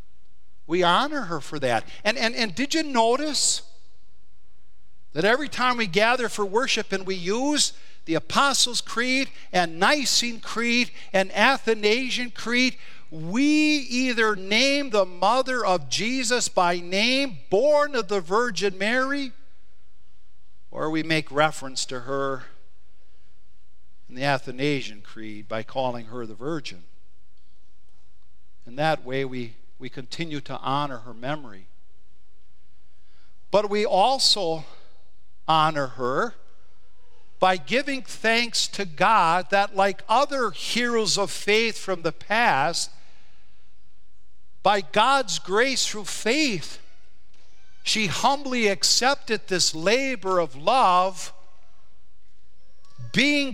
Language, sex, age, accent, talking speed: English, male, 50-69, American, 115 wpm